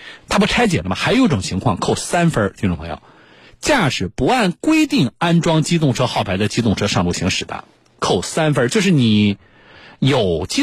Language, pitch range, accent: Chinese, 105-160 Hz, native